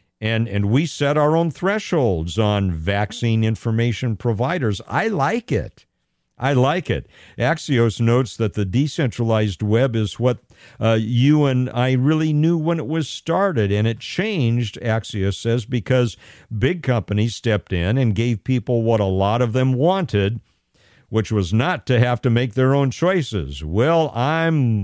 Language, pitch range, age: English, 105-140 Hz, 50-69